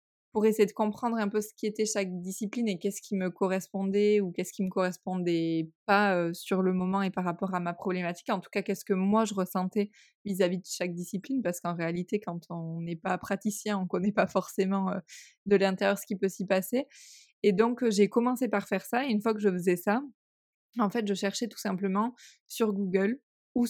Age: 20-39